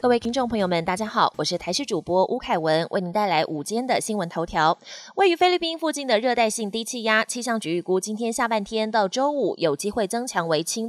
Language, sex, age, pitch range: Chinese, female, 20-39, 180-245 Hz